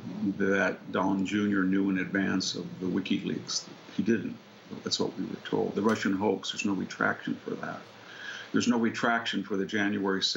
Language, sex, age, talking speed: English, male, 50-69, 175 wpm